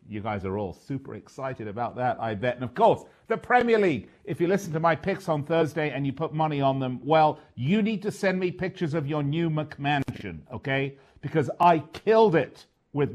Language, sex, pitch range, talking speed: English, male, 105-155 Hz, 215 wpm